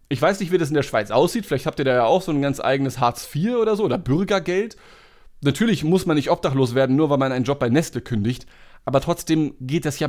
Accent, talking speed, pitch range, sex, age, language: German, 260 wpm, 130-165 Hz, male, 30-49, German